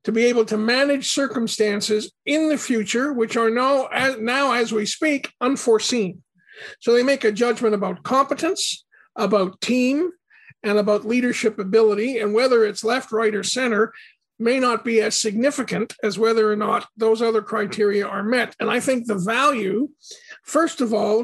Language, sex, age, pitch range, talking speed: English, male, 50-69, 215-255 Hz, 170 wpm